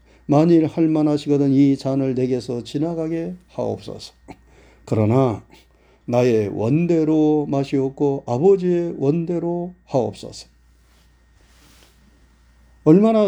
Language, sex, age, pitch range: Korean, male, 40-59, 120-170 Hz